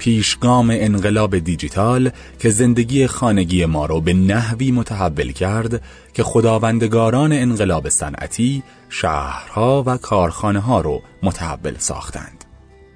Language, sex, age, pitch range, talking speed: Persian, male, 30-49, 85-125 Hz, 105 wpm